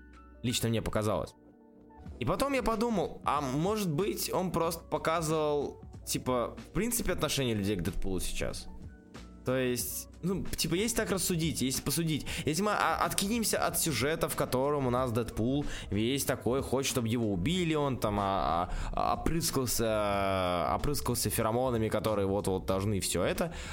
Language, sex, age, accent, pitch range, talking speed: Russian, male, 20-39, native, 100-160 Hz, 150 wpm